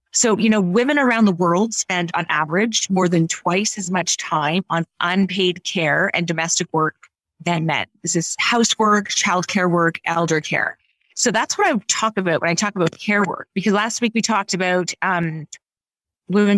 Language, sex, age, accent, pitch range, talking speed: English, female, 30-49, American, 170-210 Hz, 190 wpm